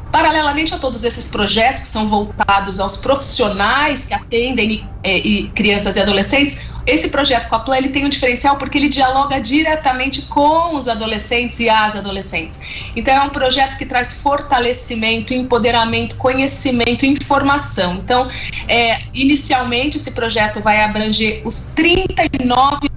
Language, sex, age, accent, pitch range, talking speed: Portuguese, female, 30-49, Brazilian, 220-270 Hz, 145 wpm